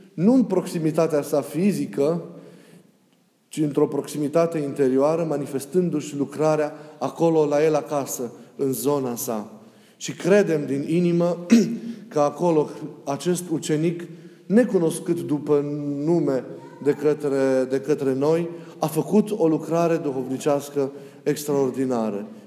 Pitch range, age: 140-170 Hz, 30-49